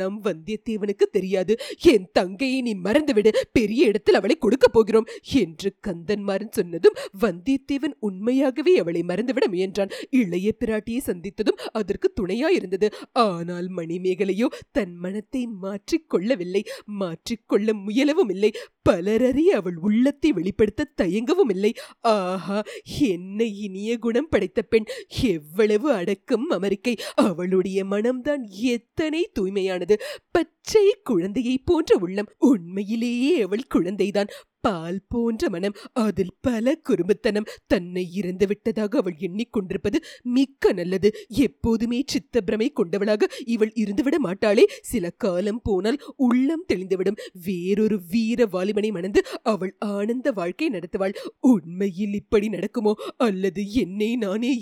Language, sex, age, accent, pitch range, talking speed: Tamil, female, 30-49, native, 200-270 Hz, 95 wpm